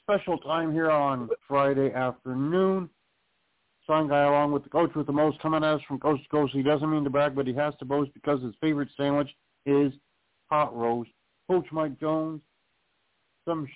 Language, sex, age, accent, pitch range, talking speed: English, male, 50-69, American, 115-155 Hz, 185 wpm